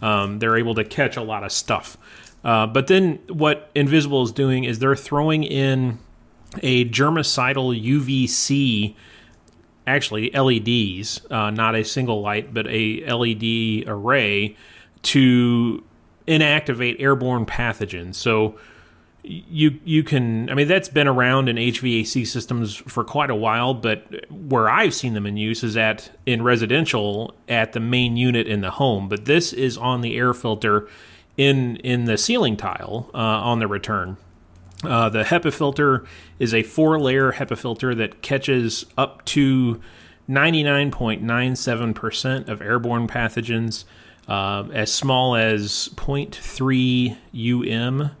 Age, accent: 30-49, American